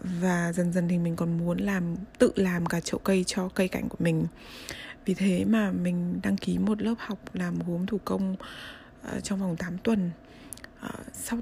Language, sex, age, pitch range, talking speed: Vietnamese, female, 20-39, 175-220 Hz, 200 wpm